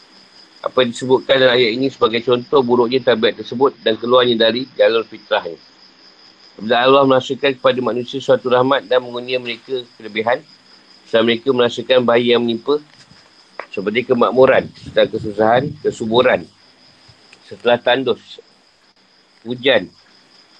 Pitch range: 110-130 Hz